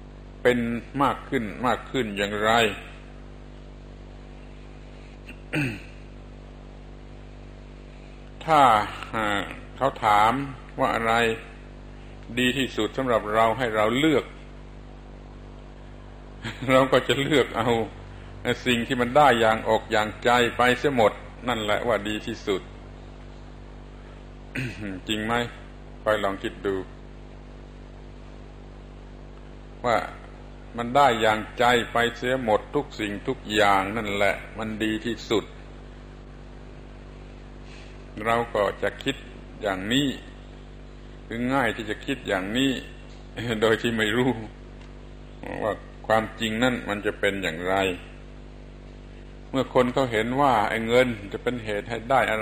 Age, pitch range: 60-79, 100-125 Hz